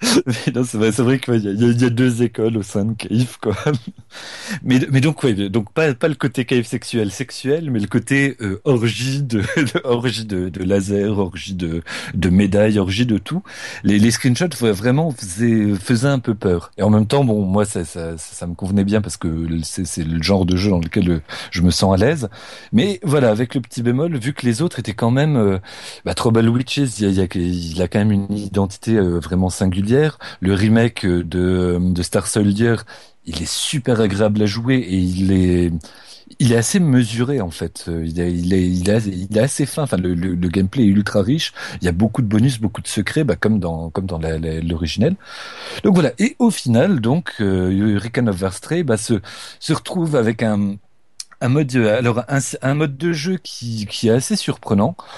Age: 40-59